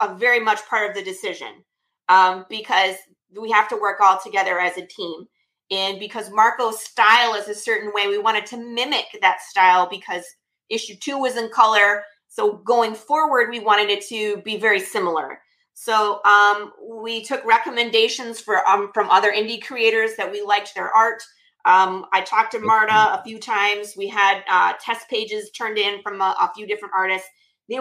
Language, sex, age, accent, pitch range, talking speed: English, female, 30-49, American, 200-235 Hz, 185 wpm